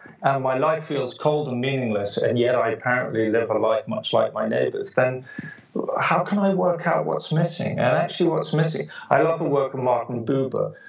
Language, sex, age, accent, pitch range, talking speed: English, male, 40-59, British, 120-170 Hz, 205 wpm